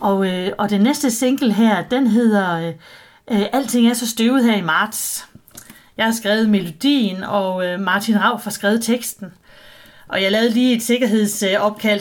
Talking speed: 170 wpm